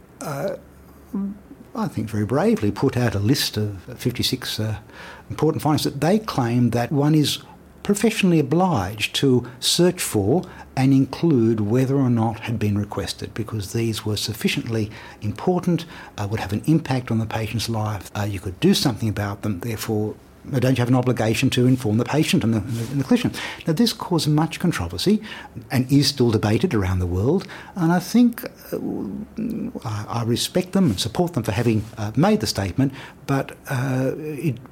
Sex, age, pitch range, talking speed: male, 60-79, 105-150 Hz, 165 wpm